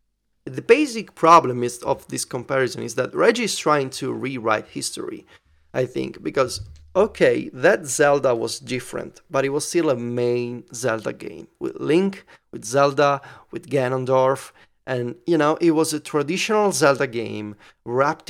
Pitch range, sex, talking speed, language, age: 120-160 Hz, male, 150 wpm, English, 30-49